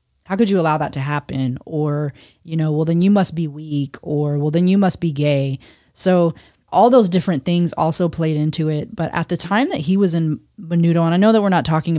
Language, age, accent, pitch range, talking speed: English, 20-39, American, 145-165 Hz, 240 wpm